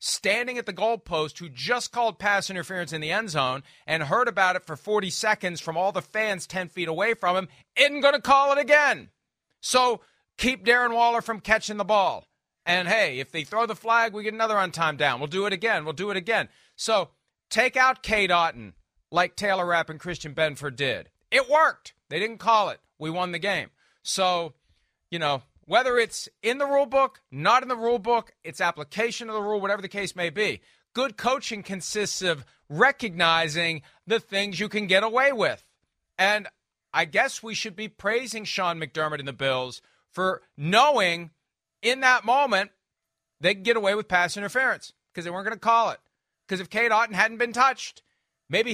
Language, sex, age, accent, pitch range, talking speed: English, male, 40-59, American, 165-230 Hz, 195 wpm